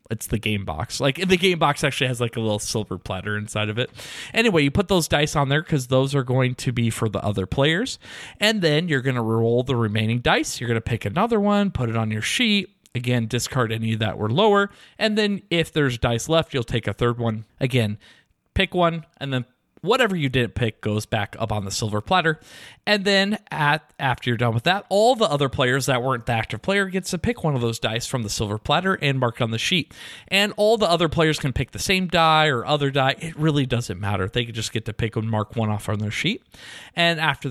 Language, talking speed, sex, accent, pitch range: English, 245 wpm, male, American, 115-160 Hz